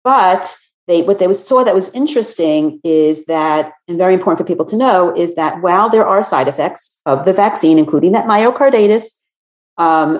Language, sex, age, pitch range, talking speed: English, female, 40-59, 150-195 Hz, 180 wpm